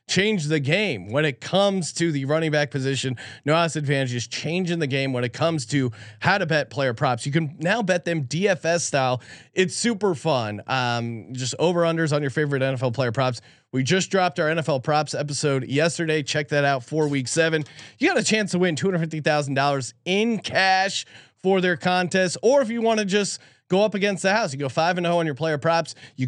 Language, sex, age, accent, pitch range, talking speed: English, male, 30-49, American, 135-180 Hz, 210 wpm